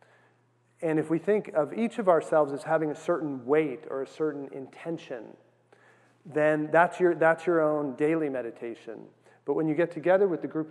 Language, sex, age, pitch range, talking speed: English, male, 40-59, 135-160 Hz, 185 wpm